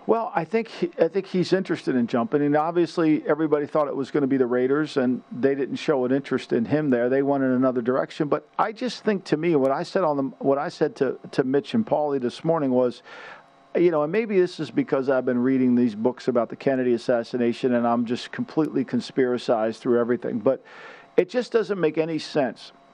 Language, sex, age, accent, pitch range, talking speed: English, male, 50-69, American, 135-180 Hz, 230 wpm